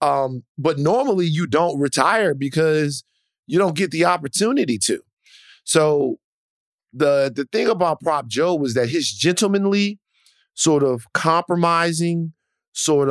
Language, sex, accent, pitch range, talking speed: English, male, American, 110-145 Hz, 130 wpm